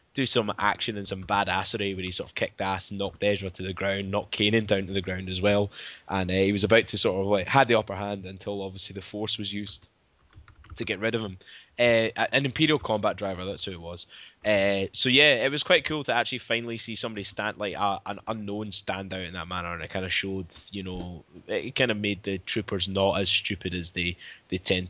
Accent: British